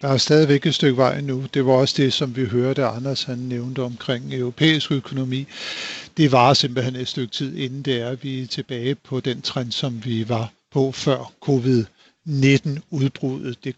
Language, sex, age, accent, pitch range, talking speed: Danish, male, 50-69, native, 130-155 Hz, 185 wpm